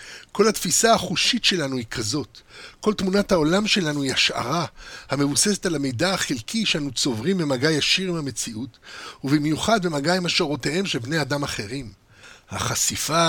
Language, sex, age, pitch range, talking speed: Hebrew, male, 60-79, 135-180 Hz, 140 wpm